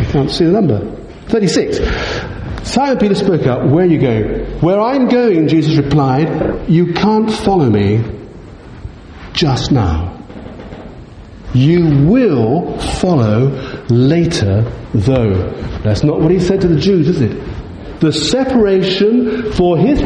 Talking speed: 130 wpm